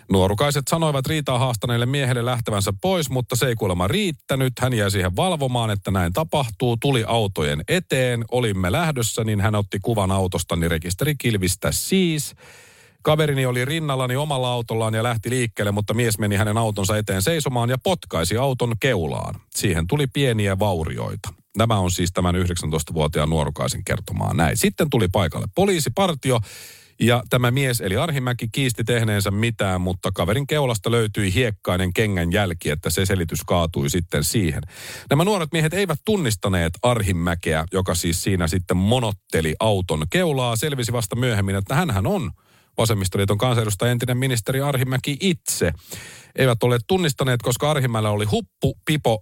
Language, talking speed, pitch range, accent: Finnish, 150 wpm, 95-130 Hz, native